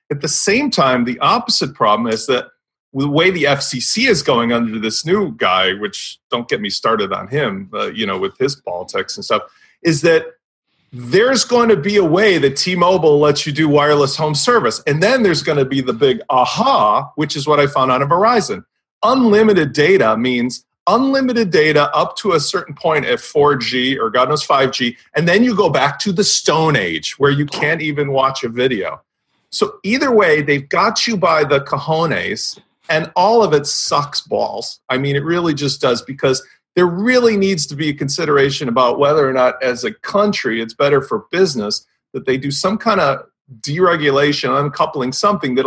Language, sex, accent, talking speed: English, male, American, 195 wpm